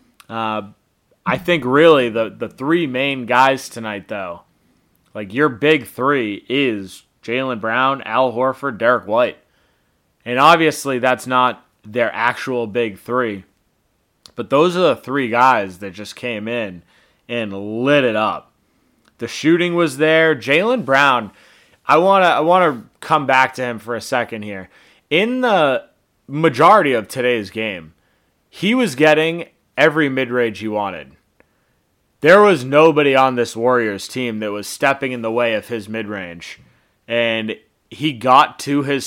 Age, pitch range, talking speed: 20-39, 110-140 Hz, 145 wpm